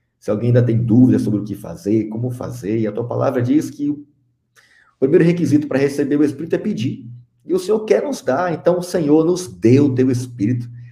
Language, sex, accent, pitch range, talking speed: Portuguese, male, Brazilian, 110-140 Hz, 220 wpm